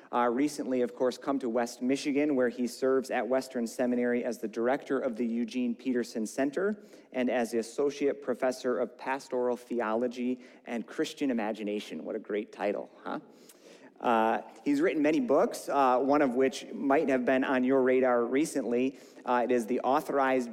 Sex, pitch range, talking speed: male, 115-130 Hz, 170 wpm